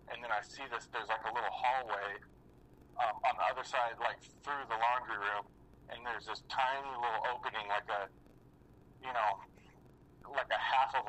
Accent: American